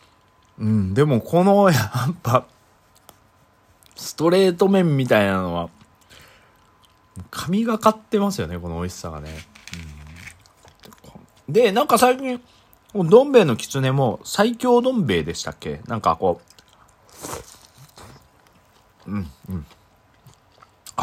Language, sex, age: Japanese, male, 40-59